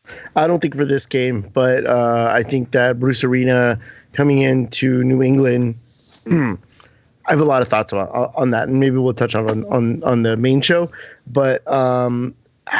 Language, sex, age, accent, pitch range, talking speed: English, male, 20-39, American, 110-135 Hz, 180 wpm